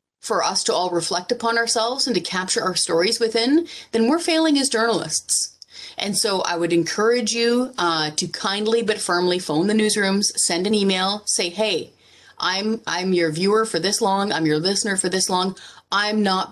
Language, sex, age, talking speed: English, female, 30-49, 190 wpm